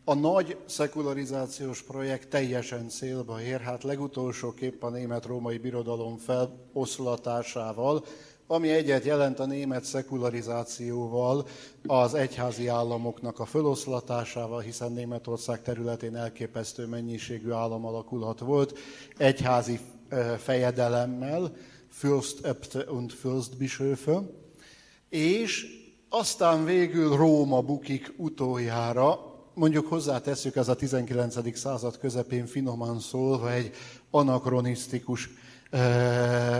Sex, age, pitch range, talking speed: male, 50-69, 120-140 Hz, 90 wpm